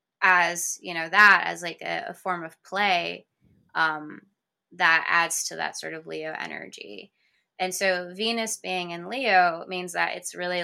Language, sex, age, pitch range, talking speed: English, female, 20-39, 160-195 Hz, 170 wpm